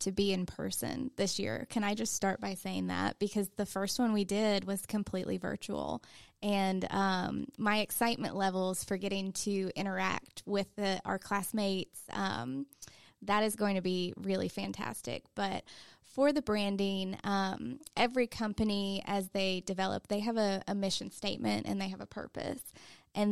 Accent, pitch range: American, 195-235 Hz